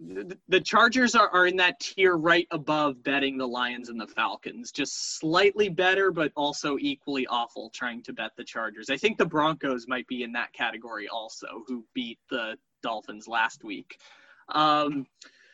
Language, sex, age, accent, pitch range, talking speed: English, male, 20-39, American, 130-185 Hz, 170 wpm